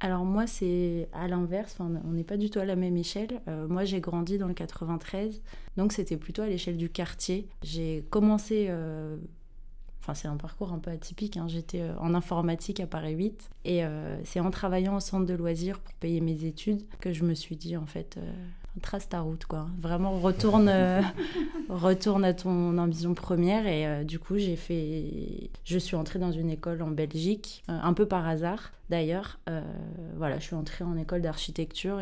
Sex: female